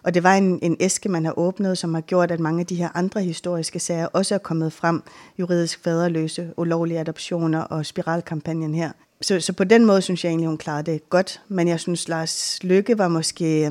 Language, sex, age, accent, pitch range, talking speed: English, female, 30-49, Danish, 165-185 Hz, 220 wpm